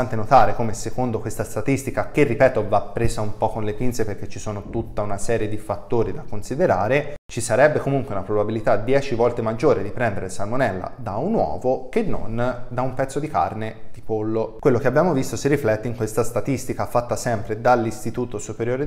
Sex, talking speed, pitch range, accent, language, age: male, 190 wpm, 105-130 Hz, native, Italian, 20-39